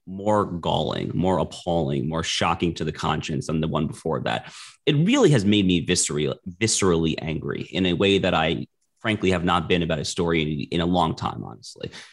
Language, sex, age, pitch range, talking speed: English, male, 30-49, 85-110 Hz, 190 wpm